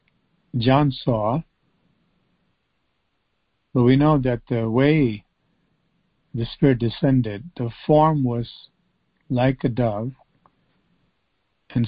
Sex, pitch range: male, 125-150 Hz